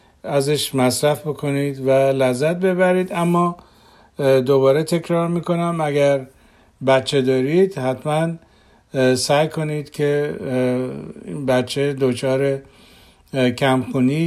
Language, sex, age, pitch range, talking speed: Persian, male, 50-69, 130-150 Hz, 85 wpm